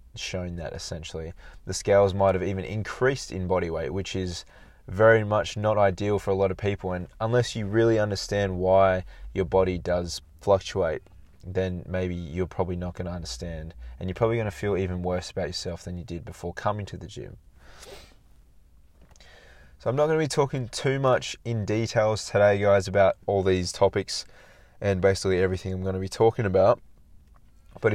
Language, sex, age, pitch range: English, male, 20-39, 90-105 Hz